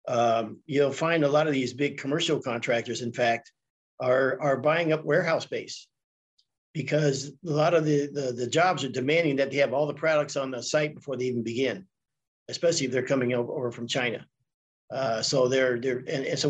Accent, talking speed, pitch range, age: American, 205 wpm, 130-160 Hz, 50-69